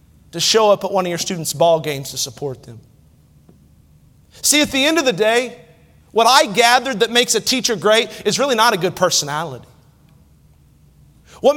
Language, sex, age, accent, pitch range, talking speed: English, male, 40-59, American, 185-275 Hz, 180 wpm